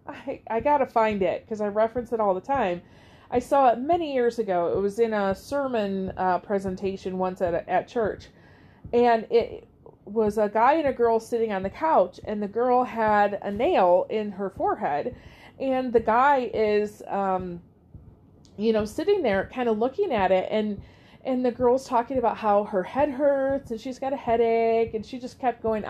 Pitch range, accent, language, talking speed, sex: 215-275 Hz, American, English, 195 wpm, female